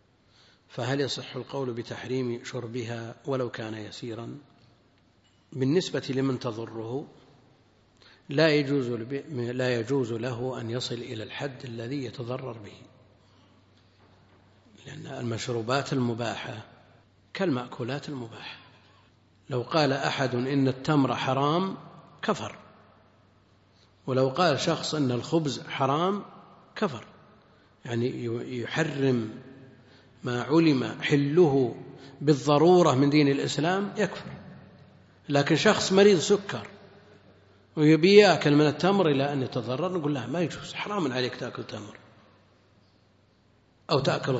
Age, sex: 50-69, male